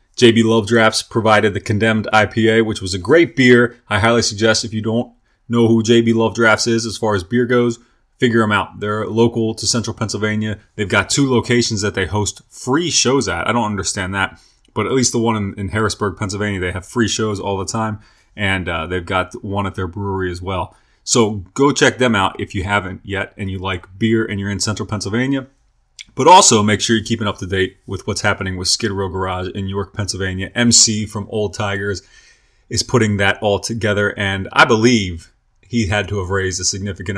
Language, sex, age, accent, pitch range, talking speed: English, male, 30-49, American, 95-115 Hz, 215 wpm